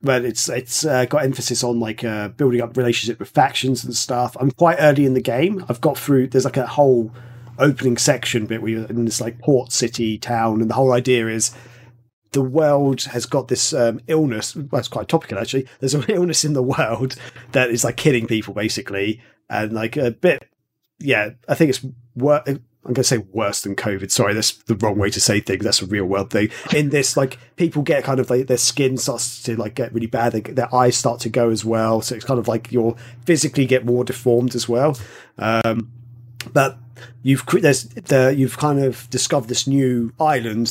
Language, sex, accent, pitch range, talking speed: English, male, British, 115-135 Hz, 215 wpm